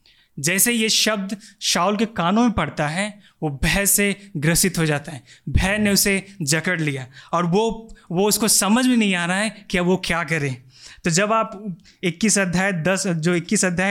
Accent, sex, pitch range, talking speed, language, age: native, male, 165-205 Hz, 195 wpm, Hindi, 20-39